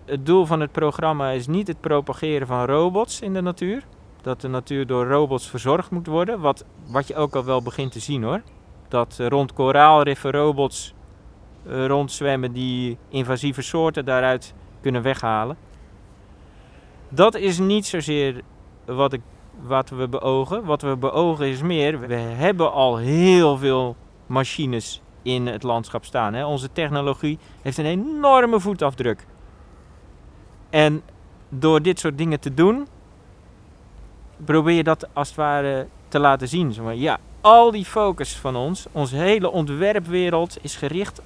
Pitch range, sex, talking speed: 125-170 Hz, male, 145 wpm